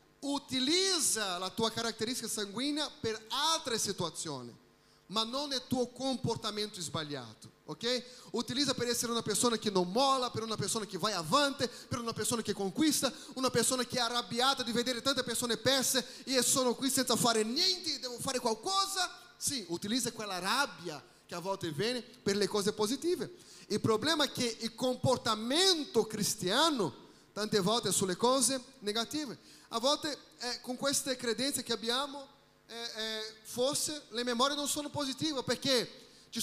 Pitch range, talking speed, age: 220-275 Hz, 155 wpm, 30-49